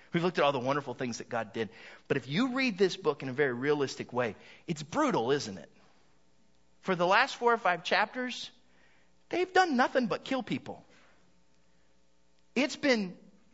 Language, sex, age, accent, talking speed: English, male, 30-49, American, 175 wpm